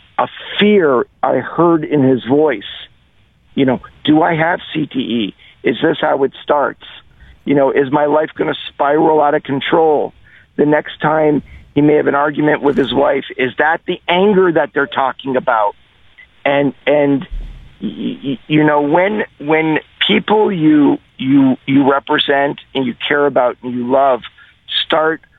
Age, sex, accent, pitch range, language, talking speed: 50-69, male, American, 140-165 Hz, English, 160 wpm